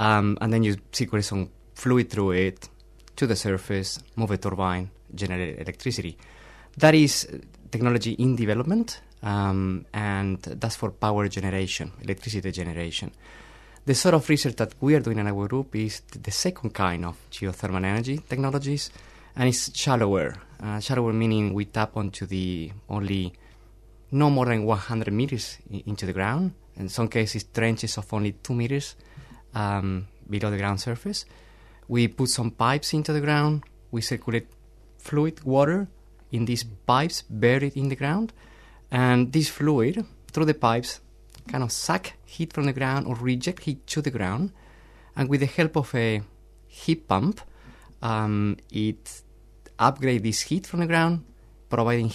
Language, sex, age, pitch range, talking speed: English, male, 20-39, 105-135 Hz, 155 wpm